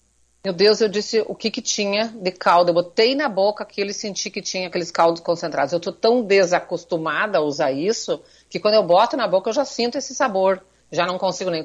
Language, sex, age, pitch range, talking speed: Portuguese, female, 40-59, 175-220 Hz, 225 wpm